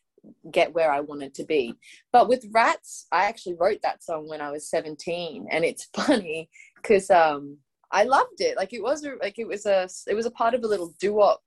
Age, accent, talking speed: 20-39, Australian, 220 wpm